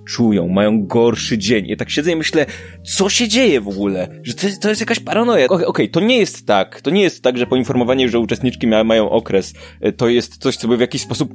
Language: Polish